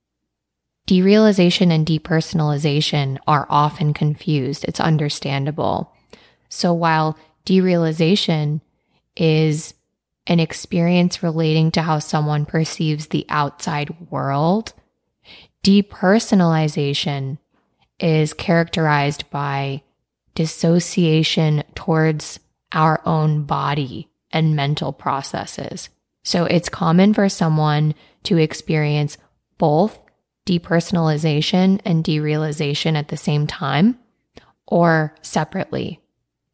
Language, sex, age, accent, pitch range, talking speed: English, female, 20-39, American, 150-175 Hz, 85 wpm